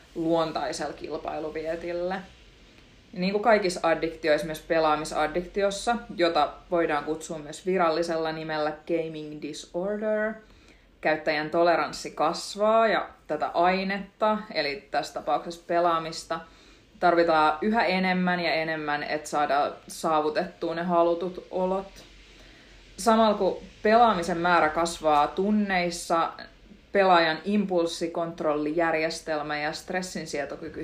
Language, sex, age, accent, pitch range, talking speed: Finnish, female, 30-49, native, 160-185 Hz, 90 wpm